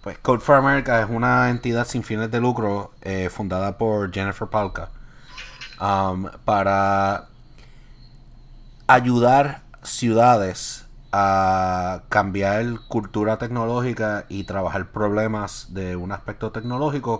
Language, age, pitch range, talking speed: Spanish, 30-49, 95-120 Hz, 110 wpm